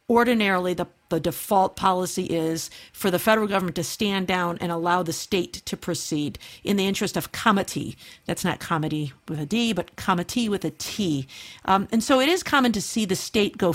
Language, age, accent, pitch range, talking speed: English, 50-69, American, 180-225 Hz, 200 wpm